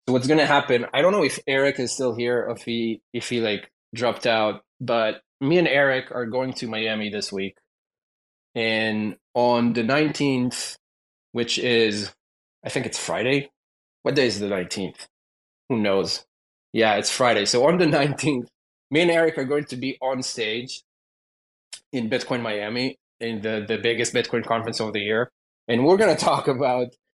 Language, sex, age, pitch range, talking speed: English, male, 20-39, 115-140 Hz, 180 wpm